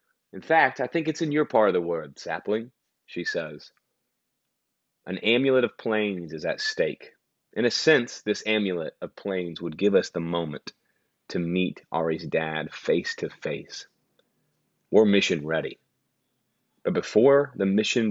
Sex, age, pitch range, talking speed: male, 30-49, 95-135 Hz, 155 wpm